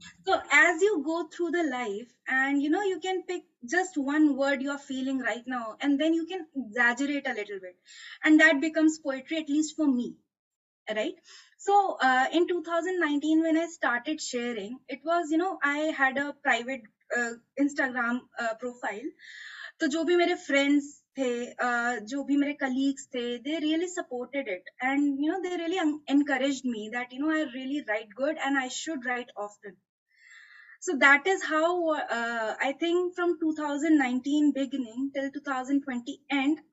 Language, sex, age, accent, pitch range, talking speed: Hindi, female, 20-39, native, 255-320 Hz, 175 wpm